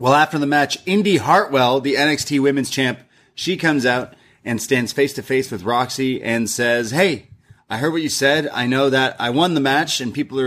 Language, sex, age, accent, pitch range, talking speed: English, male, 30-49, American, 110-140 Hz, 200 wpm